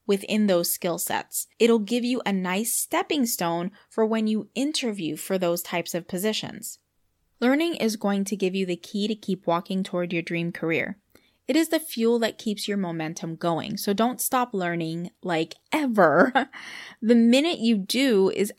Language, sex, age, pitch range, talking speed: English, female, 20-39, 180-235 Hz, 180 wpm